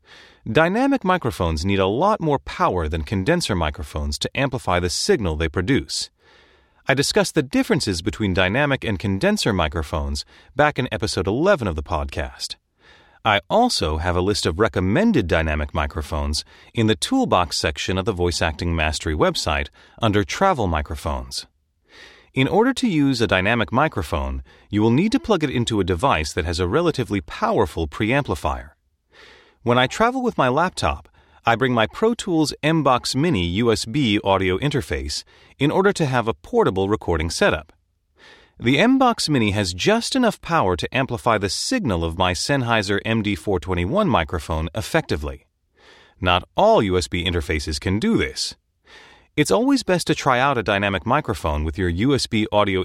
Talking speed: 155 wpm